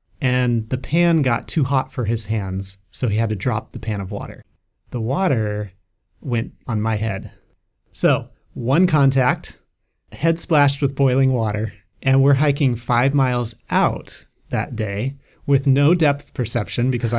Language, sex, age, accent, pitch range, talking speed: English, male, 30-49, American, 105-135 Hz, 155 wpm